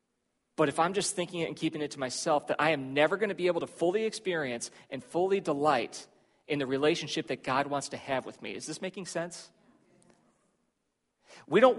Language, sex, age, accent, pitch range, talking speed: English, male, 40-59, American, 150-205 Hz, 210 wpm